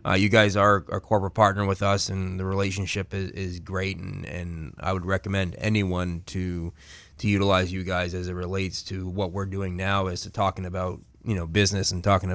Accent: American